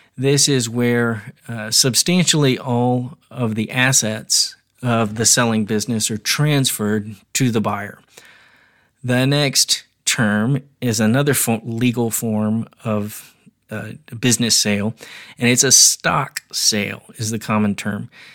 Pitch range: 110-130 Hz